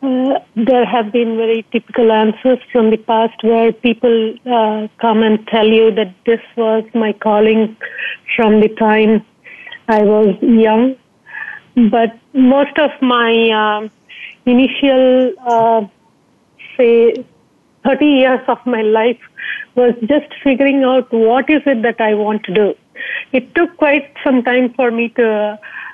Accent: Indian